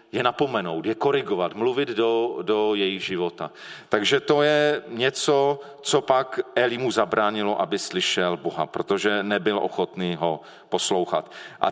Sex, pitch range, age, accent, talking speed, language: male, 105-165 Hz, 40-59, native, 140 wpm, Czech